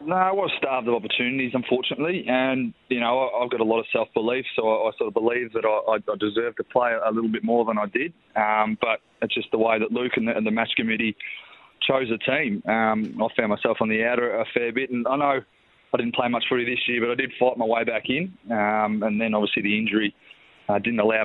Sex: male